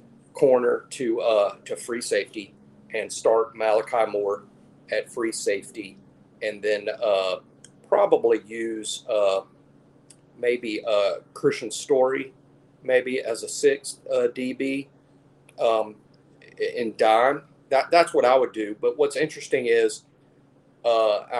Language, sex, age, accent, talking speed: English, male, 40-59, American, 120 wpm